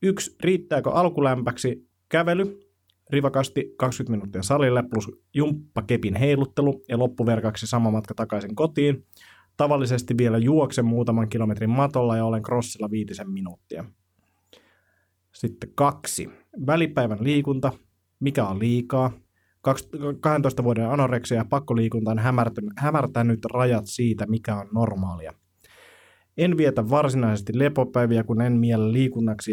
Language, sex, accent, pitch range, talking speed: Finnish, male, native, 110-130 Hz, 110 wpm